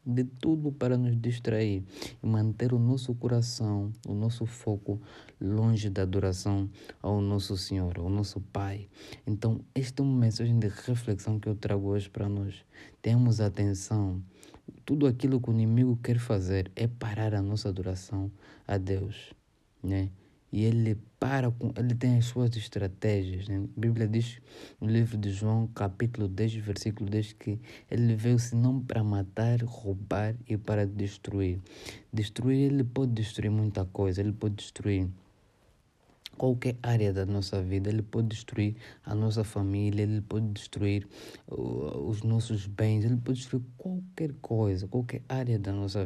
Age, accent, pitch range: 20-39, Brazilian, 100-120 Hz